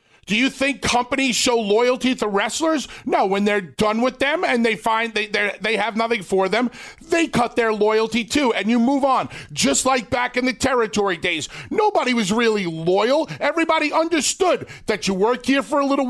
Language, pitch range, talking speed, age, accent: English, 215-265 Hz, 195 wpm, 40-59, American